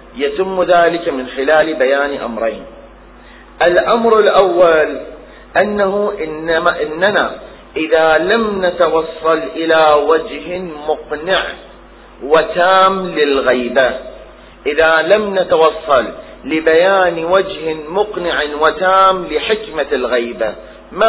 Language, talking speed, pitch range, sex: Arabic, 85 wpm, 150-190 Hz, male